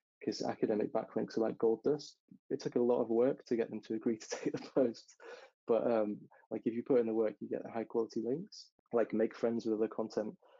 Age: 20-39